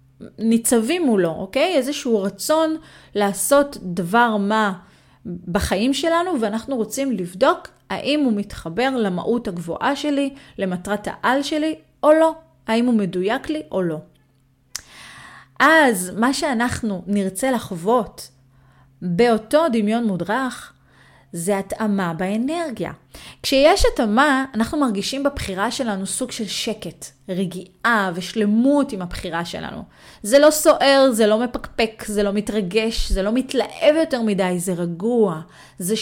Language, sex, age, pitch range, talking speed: Hebrew, female, 30-49, 190-275 Hz, 120 wpm